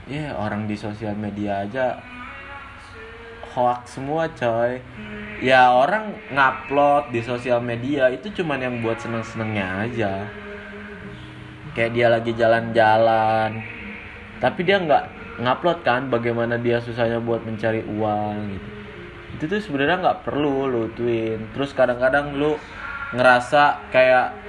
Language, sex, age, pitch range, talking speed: Indonesian, male, 20-39, 110-140 Hz, 125 wpm